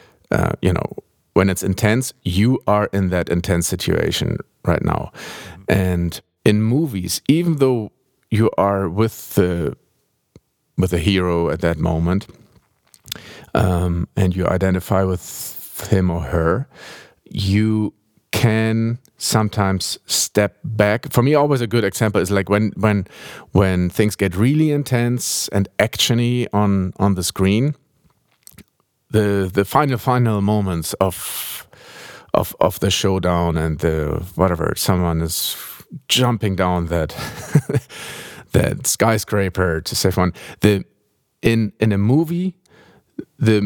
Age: 50-69